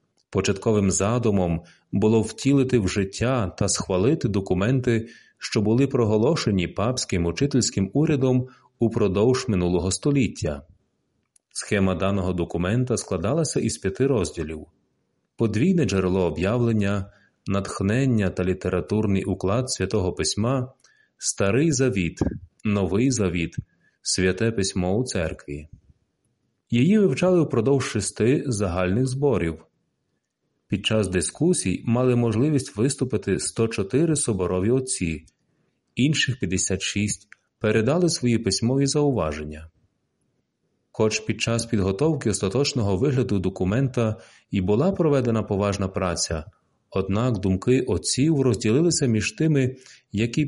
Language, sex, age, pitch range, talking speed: Ukrainian, male, 30-49, 95-130 Hz, 100 wpm